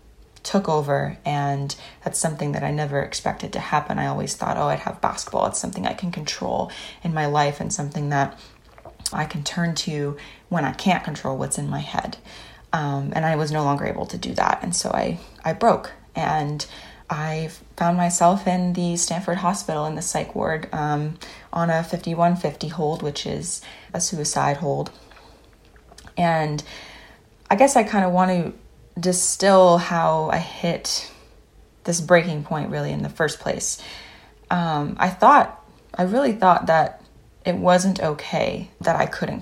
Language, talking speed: English, 170 wpm